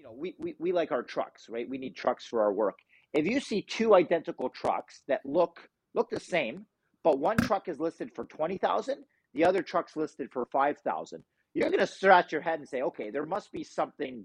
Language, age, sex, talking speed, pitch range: English, 40-59, male, 225 wpm, 130-175 Hz